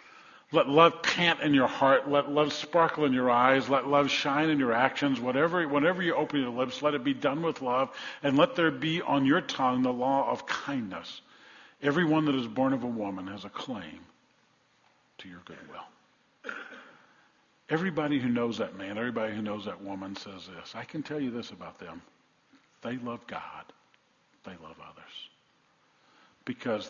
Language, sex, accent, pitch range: English, male, American, 120-150 Hz